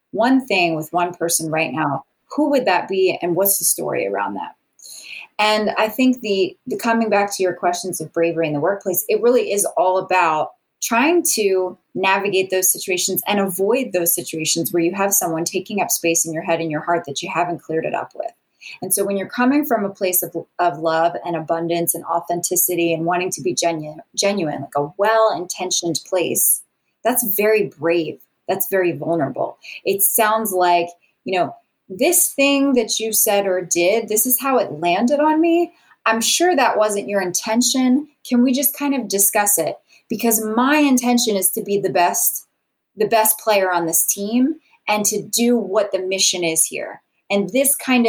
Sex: female